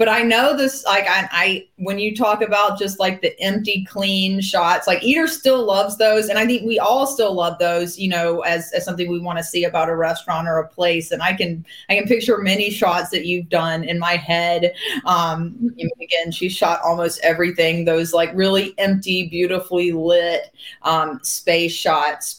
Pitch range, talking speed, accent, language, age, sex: 170-210 Hz, 200 wpm, American, English, 20-39, female